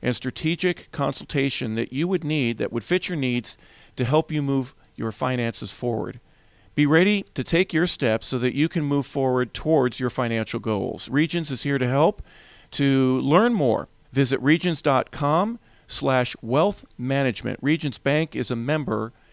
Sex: male